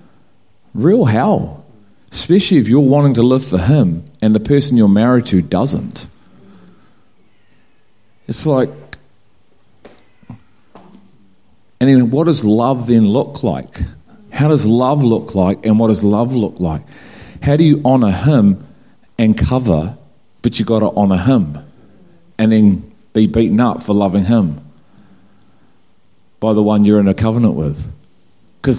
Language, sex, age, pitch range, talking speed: English, male, 40-59, 95-130 Hz, 140 wpm